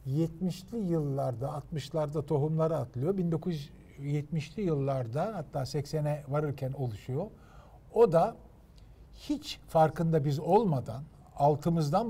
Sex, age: male, 50-69